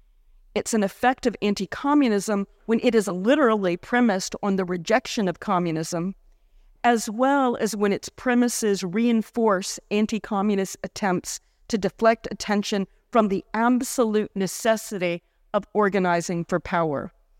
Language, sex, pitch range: Slovak, female, 190-230 Hz